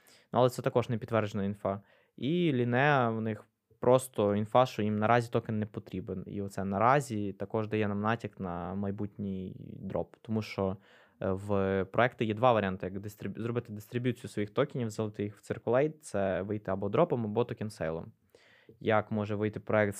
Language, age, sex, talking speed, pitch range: Ukrainian, 20-39, male, 165 wpm, 105-120 Hz